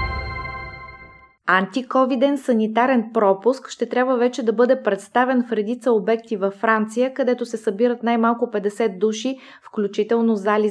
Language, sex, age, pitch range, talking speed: Bulgarian, female, 20-39, 205-240 Hz, 125 wpm